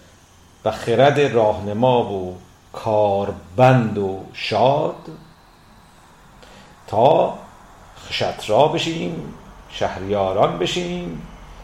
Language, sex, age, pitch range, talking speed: Persian, male, 50-69, 95-130 Hz, 55 wpm